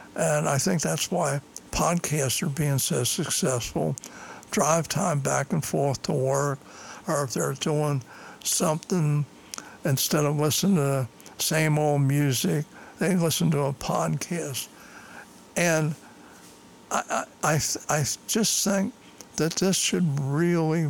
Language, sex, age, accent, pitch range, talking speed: English, male, 60-79, American, 135-155 Hz, 130 wpm